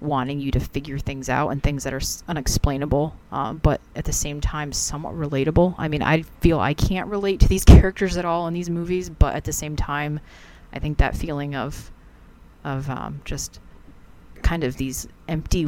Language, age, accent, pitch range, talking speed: English, 30-49, American, 130-155 Hz, 200 wpm